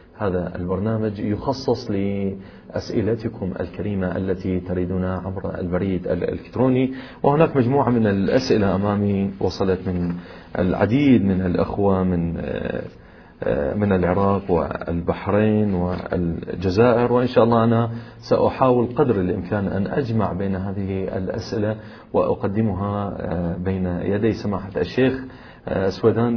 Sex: male